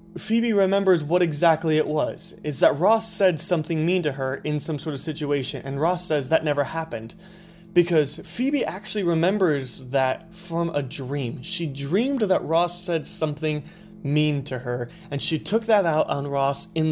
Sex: male